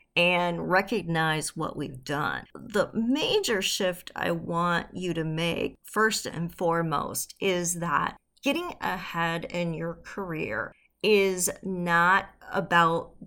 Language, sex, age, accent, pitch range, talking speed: English, female, 40-59, American, 170-215 Hz, 120 wpm